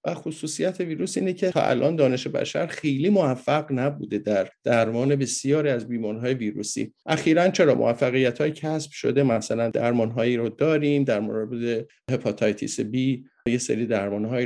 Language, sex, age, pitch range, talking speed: Persian, male, 50-69, 125-165 Hz, 135 wpm